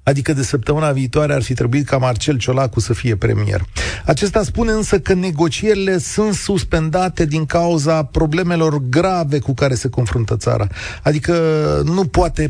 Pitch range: 105-160 Hz